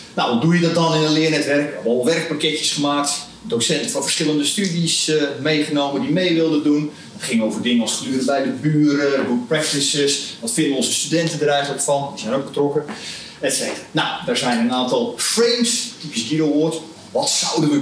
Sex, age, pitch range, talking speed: male, 40-59, 140-165 Hz, 210 wpm